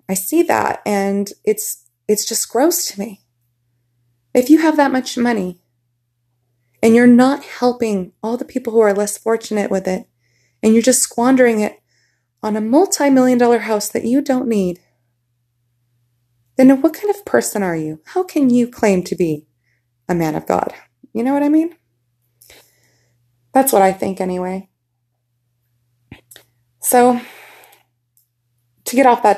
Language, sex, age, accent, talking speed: English, female, 20-39, American, 155 wpm